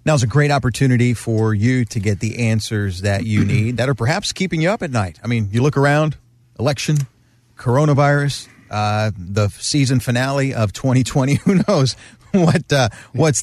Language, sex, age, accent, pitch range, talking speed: English, male, 40-59, American, 105-130 Hz, 180 wpm